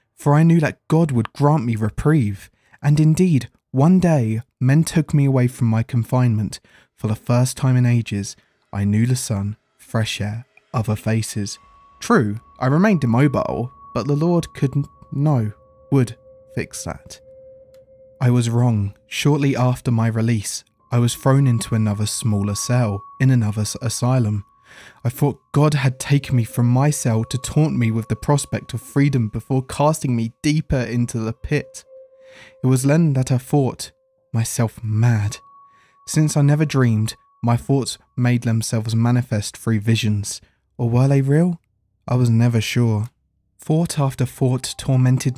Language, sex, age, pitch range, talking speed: English, male, 20-39, 110-145 Hz, 155 wpm